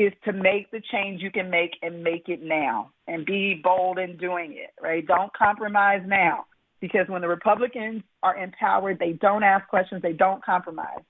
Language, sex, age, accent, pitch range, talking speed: English, female, 40-59, American, 175-215 Hz, 190 wpm